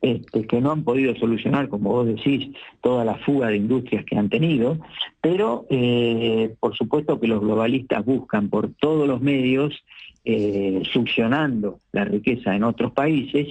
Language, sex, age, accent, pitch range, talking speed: Spanish, male, 50-69, Argentinian, 110-135 Hz, 160 wpm